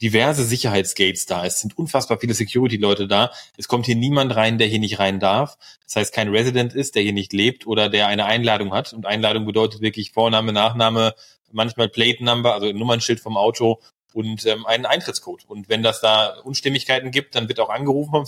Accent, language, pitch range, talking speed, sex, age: German, German, 110-130 Hz, 195 wpm, male, 30-49